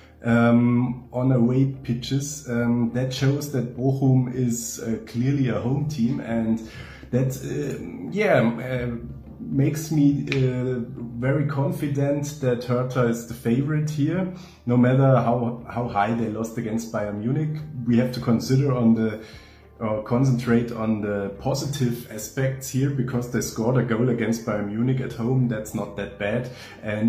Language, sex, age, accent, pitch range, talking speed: English, male, 30-49, German, 115-135 Hz, 155 wpm